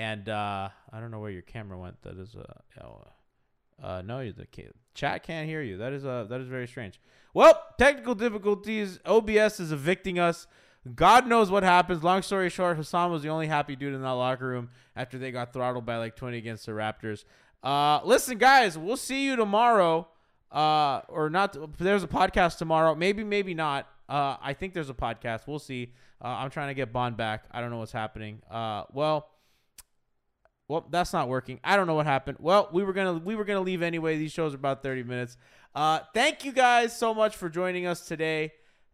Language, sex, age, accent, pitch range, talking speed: English, male, 20-39, American, 115-170 Hz, 220 wpm